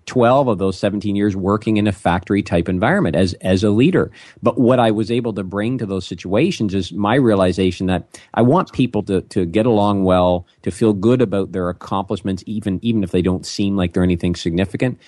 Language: English